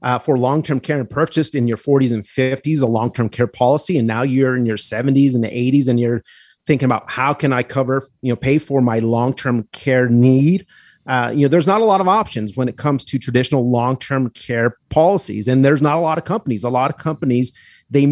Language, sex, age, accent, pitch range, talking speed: English, male, 30-49, American, 120-145 Hz, 225 wpm